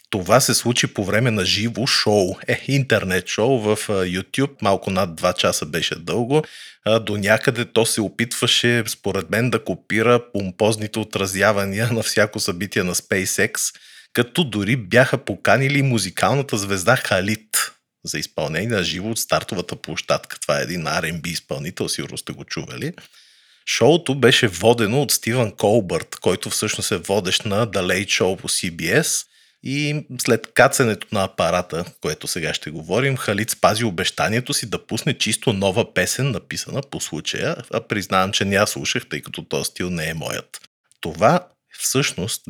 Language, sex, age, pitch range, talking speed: Bulgarian, male, 30-49, 100-125 Hz, 155 wpm